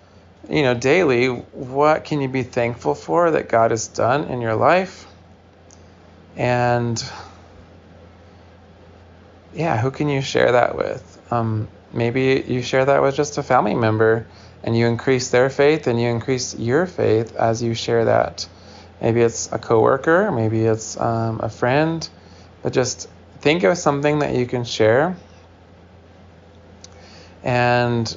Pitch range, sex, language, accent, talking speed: 90-125 Hz, male, English, American, 145 wpm